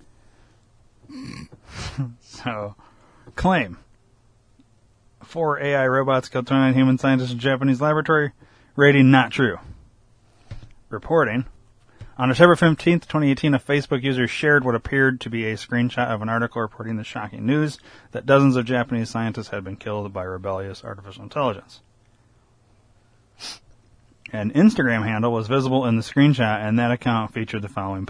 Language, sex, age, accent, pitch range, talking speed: English, male, 30-49, American, 110-130 Hz, 135 wpm